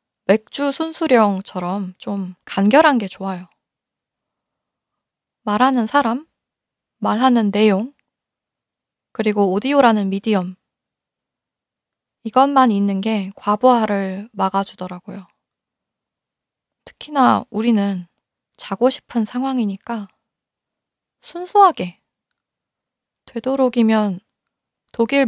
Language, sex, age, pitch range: Korean, female, 20-39, 190-250 Hz